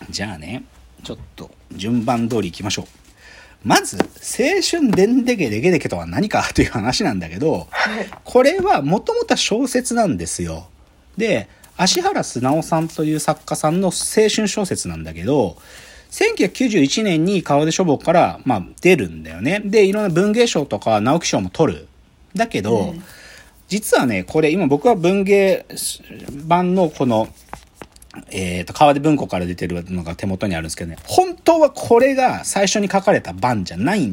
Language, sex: Japanese, male